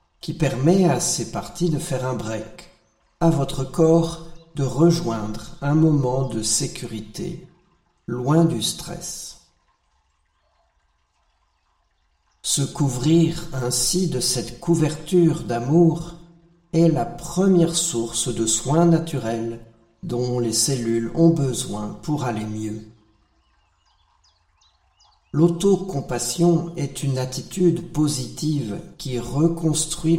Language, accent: French, French